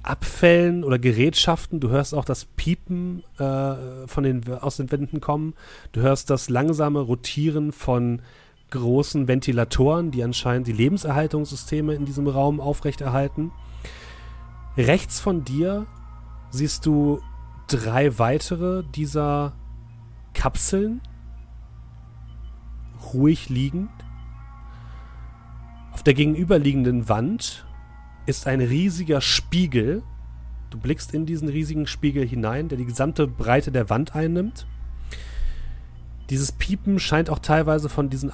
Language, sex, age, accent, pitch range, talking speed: German, male, 40-59, German, 110-150 Hz, 110 wpm